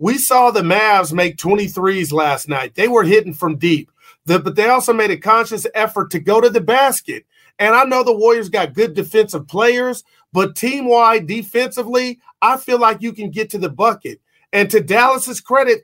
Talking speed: 190 wpm